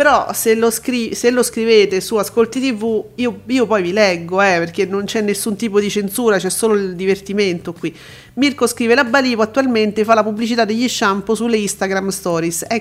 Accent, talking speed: native, 195 wpm